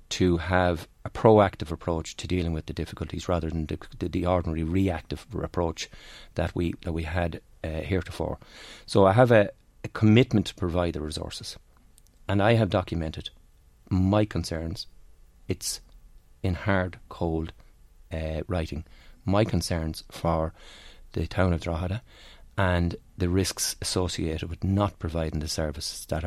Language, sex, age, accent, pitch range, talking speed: English, male, 30-49, Irish, 80-100 Hz, 145 wpm